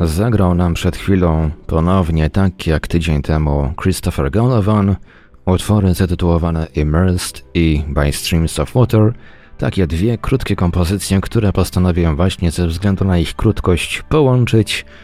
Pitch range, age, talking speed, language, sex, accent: 80-100 Hz, 30-49, 130 wpm, Polish, male, native